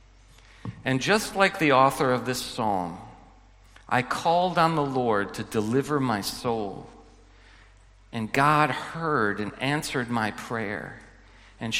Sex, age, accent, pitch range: male, 40-59, American, 105-150 Hz